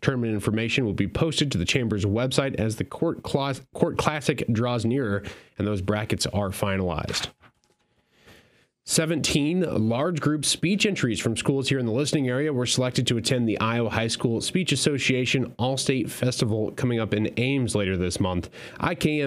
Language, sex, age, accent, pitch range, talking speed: English, male, 30-49, American, 105-135 Hz, 170 wpm